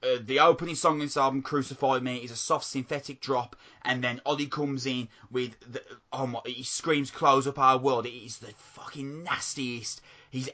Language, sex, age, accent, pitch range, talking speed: English, male, 20-39, British, 125-145 Hz, 200 wpm